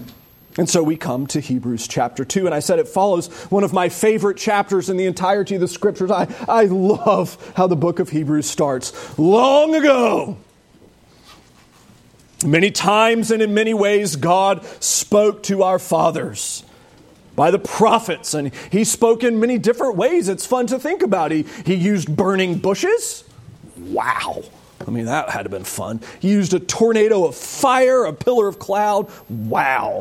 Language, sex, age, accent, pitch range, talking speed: English, male, 30-49, American, 170-220 Hz, 175 wpm